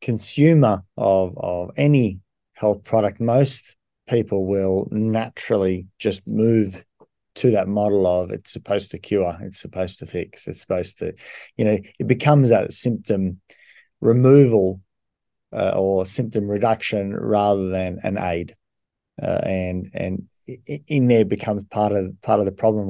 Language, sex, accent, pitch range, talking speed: English, male, Australian, 95-120 Hz, 140 wpm